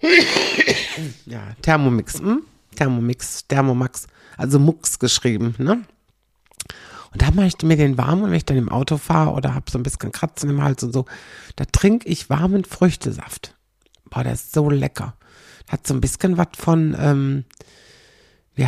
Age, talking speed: 60-79, 165 wpm